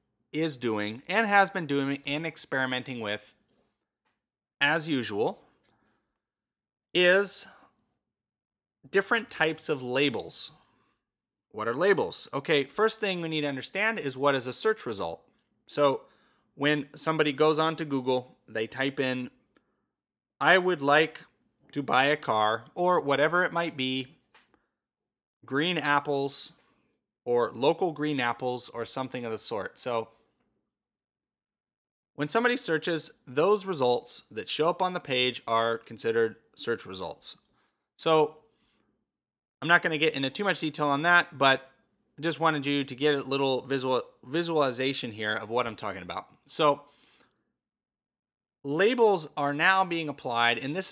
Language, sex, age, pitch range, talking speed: English, male, 30-49, 125-160 Hz, 135 wpm